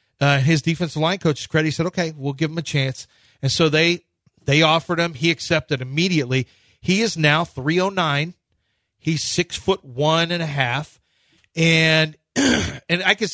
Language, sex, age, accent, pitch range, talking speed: English, male, 40-59, American, 130-170 Hz, 175 wpm